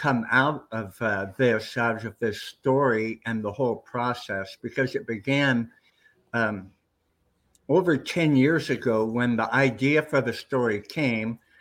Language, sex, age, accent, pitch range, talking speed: English, male, 60-79, American, 115-140 Hz, 145 wpm